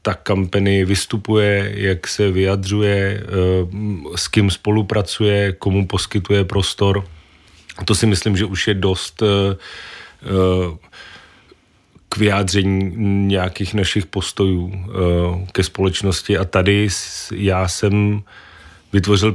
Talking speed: 95 wpm